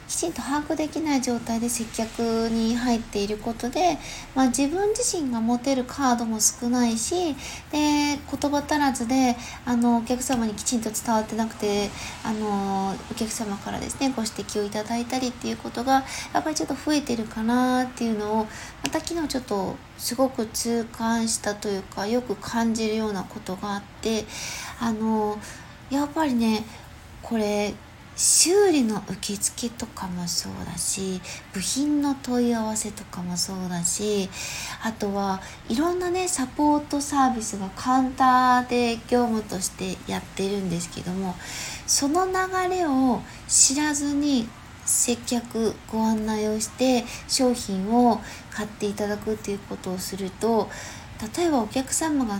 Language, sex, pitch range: Japanese, female, 210-265 Hz